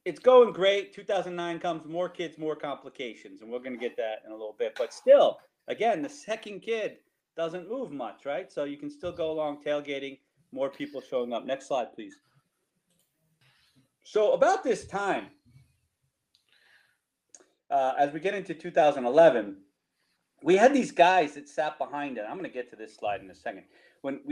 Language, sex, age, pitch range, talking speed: English, male, 40-59, 135-185 Hz, 180 wpm